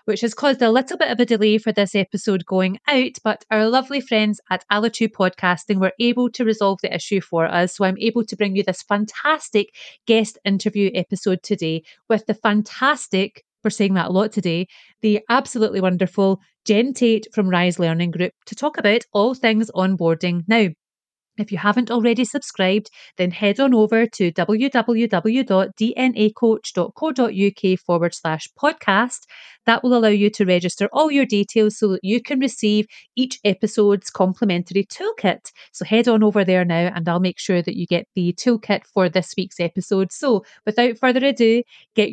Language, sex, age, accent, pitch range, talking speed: English, female, 30-49, British, 190-230 Hz, 175 wpm